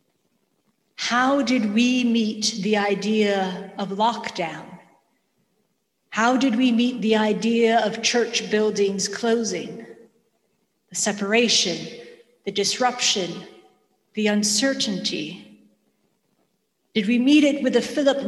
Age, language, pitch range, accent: 50-69, English, 200-245 Hz, American